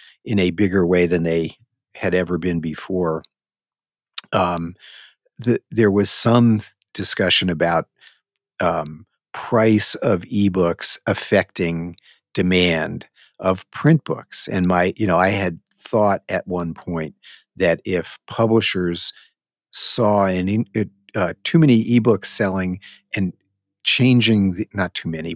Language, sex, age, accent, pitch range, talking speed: English, male, 50-69, American, 90-110 Hz, 125 wpm